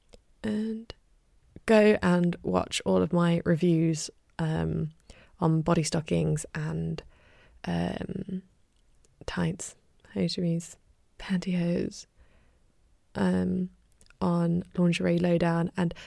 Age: 20-39